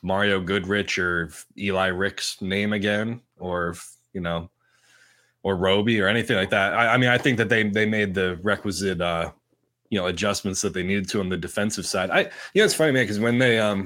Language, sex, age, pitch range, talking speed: English, male, 20-39, 85-110 Hz, 210 wpm